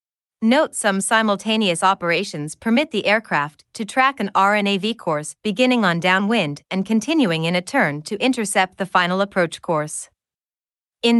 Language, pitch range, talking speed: English, 175-225 Hz, 145 wpm